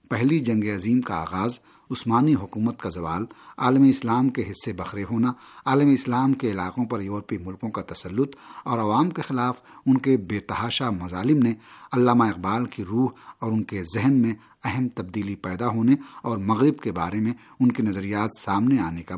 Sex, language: male, Urdu